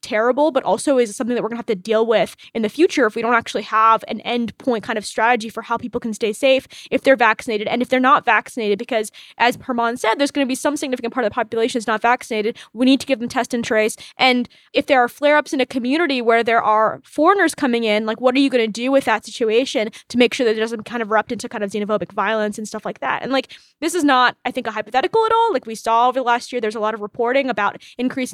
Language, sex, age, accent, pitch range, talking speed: English, female, 10-29, American, 220-265 Hz, 285 wpm